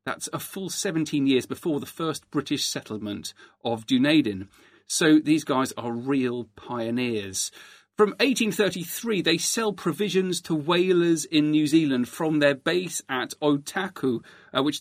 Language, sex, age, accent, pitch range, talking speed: English, male, 40-59, British, 130-180 Hz, 140 wpm